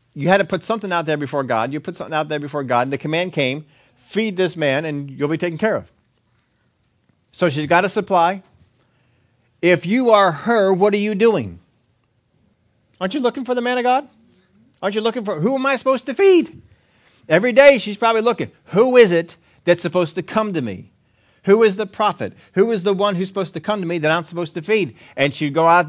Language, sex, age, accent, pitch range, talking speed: English, male, 40-59, American, 135-210 Hz, 225 wpm